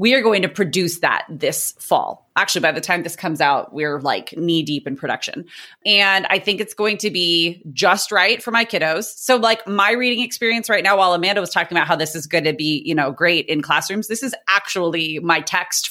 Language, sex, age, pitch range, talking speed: English, female, 30-49, 165-210 Hz, 230 wpm